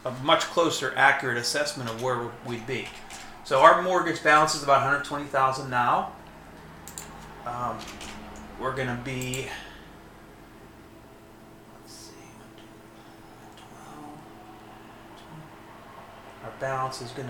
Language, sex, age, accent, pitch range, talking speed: English, male, 30-49, American, 115-135 Hz, 95 wpm